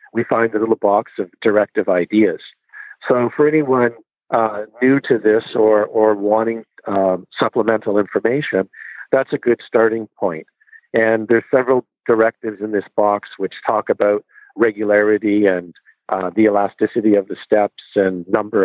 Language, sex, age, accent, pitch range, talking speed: English, male, 50-69, American, 100-115 Hz, 150 wpm